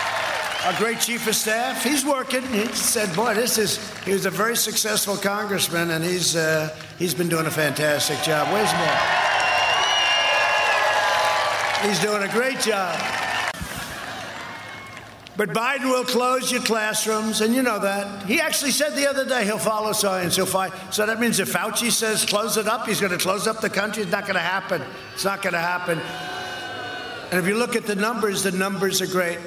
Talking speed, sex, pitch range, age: 190 wpm, male, 190-245 Hz, 60-79